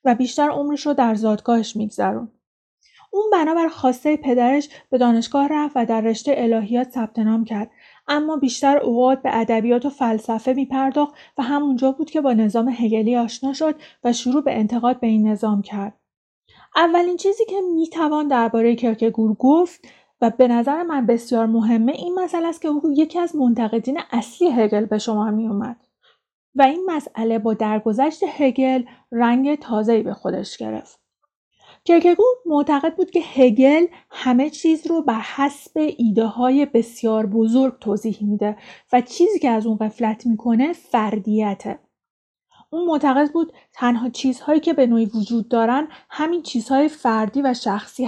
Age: 30-49